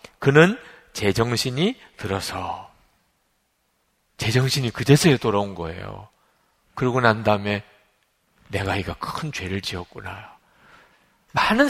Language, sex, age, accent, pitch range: Korean, male, 40-59, native, 115-185 Hz